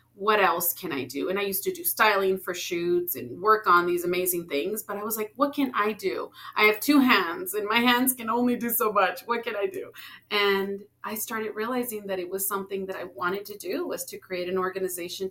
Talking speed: 240 wpm